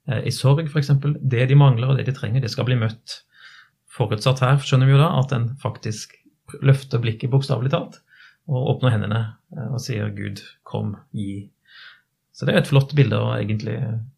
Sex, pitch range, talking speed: male, 115-140 Hz, 190 wpm